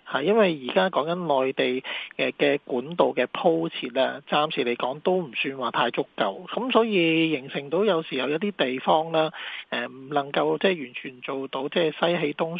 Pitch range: 130-170 Hz